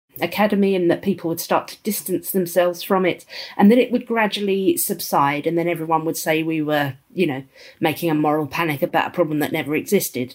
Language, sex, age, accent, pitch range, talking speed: English, female, 40-59, British, 165-200 Hz, 210 wpm